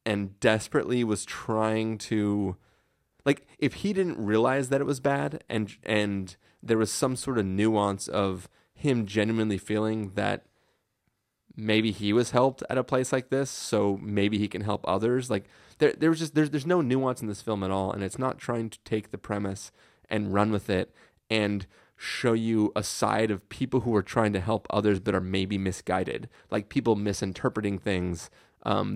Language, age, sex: English, 30-49, male